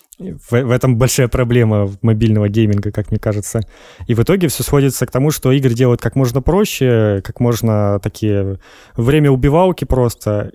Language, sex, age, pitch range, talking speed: Russian, male, 20-39, 105-125 Hz, 160 wpm